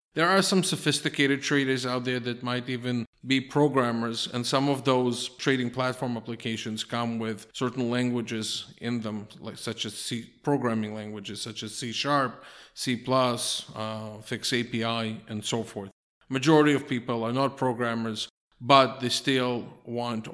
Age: 50-69